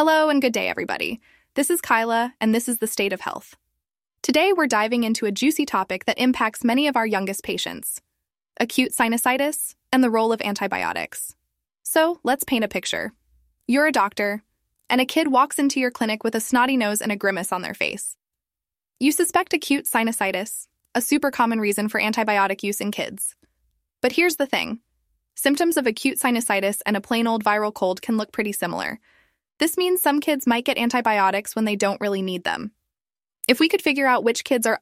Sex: female